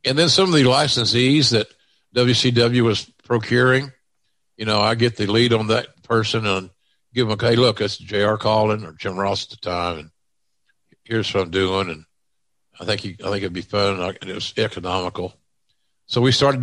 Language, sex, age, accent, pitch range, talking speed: English, male, 50-69, American, 95-120 Hz, 195 wpm